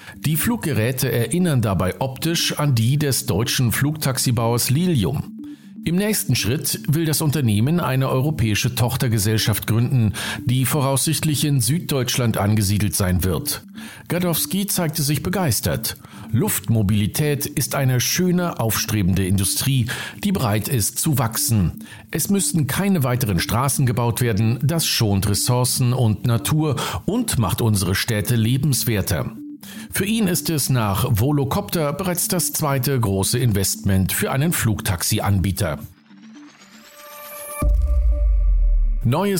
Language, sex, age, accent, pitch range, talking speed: German, male, 50-69, German, 110-155 Hz, 115 wpm